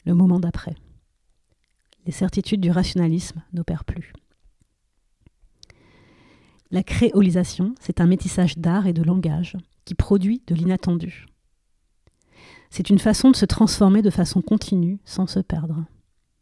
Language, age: French, 30-49